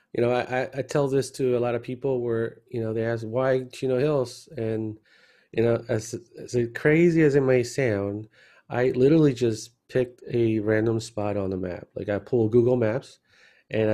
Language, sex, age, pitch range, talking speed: English, male, 30-49, 110-125 Hz, 195 wpm